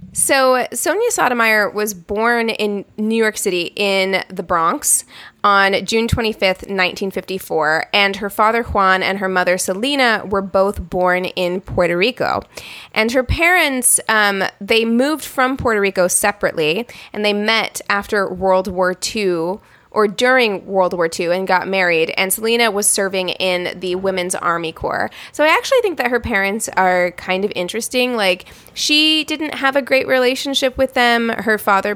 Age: 20-39